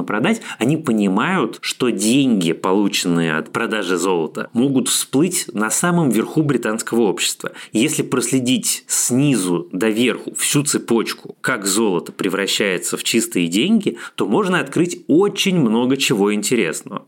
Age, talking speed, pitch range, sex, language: 20-39, 125 wpm, 100-120 Hz, male, Russian